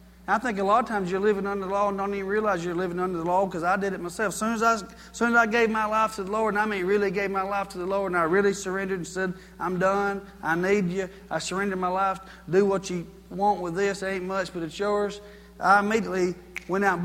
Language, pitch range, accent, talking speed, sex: English, 175-205 Hz, American, 280 wpm, male